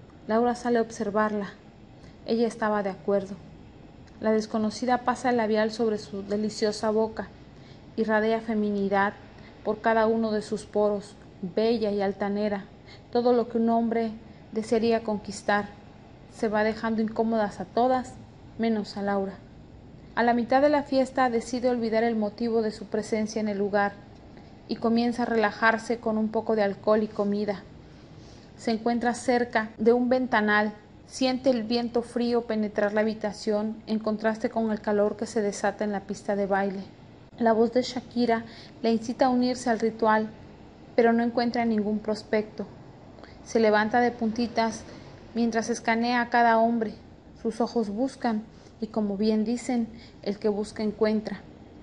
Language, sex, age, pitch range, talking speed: Spanish, female, 30-49, 210-235 Hz, 155 wpm